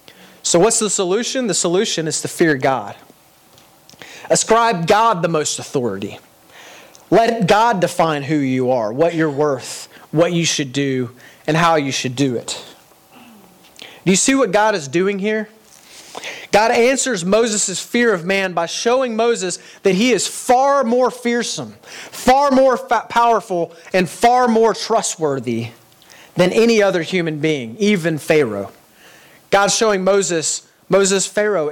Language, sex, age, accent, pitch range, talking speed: English, male, 30-49, American, 140-200 Hz, 145 wpm